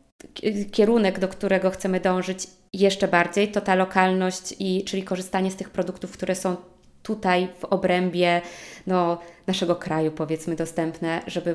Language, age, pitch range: Polish, 20-39, 175-200 Hz